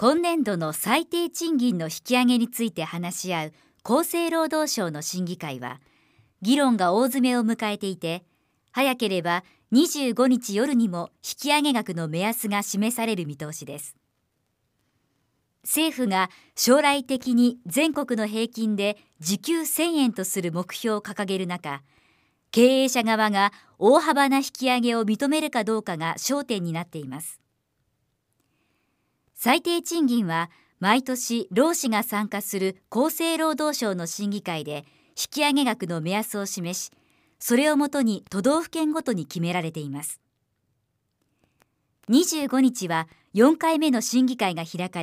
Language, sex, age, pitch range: Japanese, male, 50-69, 170-260 Hz